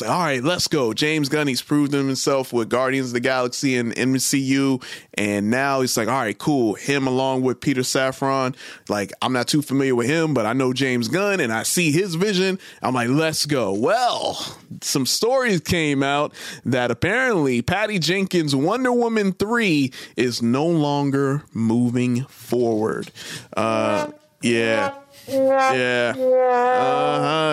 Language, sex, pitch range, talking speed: English, male, 125-170 Hz, 155 wpm